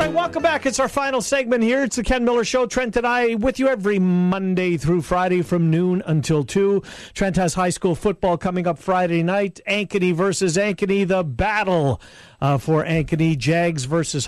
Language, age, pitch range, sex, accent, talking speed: English, 50-69, 170-230 Hz, male, American, 195 wpm